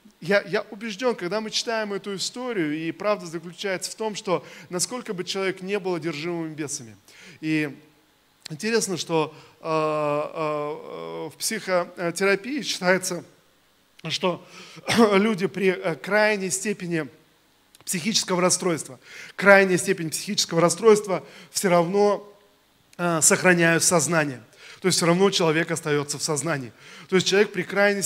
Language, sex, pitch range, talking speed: Russian, male, 165-200 Hz, 125 wpm